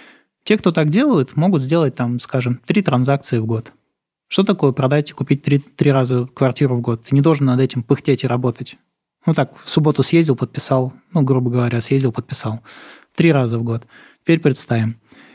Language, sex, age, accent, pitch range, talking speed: Russian, male, 20-39, native, 125-165 Hz, 190 wpm